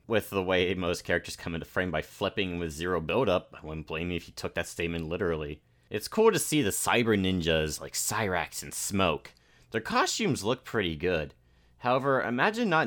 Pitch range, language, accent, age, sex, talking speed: 80-115 Hz, English, American, 30-49, male, 195 wpm